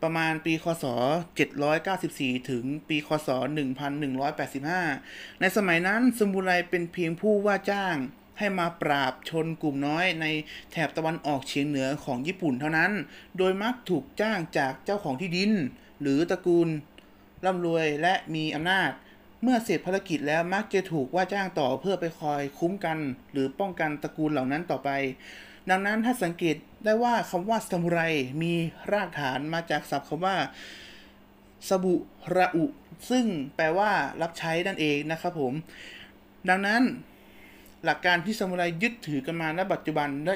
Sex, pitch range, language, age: male, 150-190 Hz, Thai, 20-39